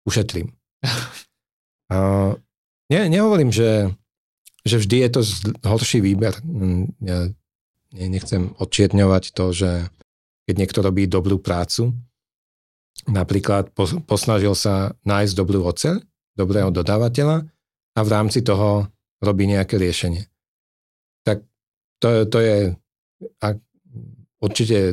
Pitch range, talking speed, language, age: 90-110 Hz, 110 wpm, Czech, 40-59